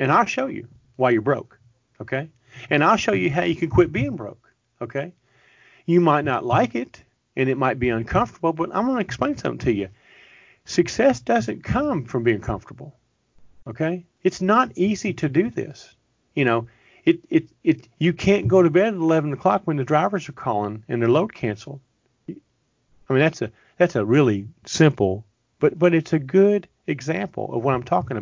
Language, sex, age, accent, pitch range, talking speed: English, male, 40-59, American, 115-160 Hz, 190 wpm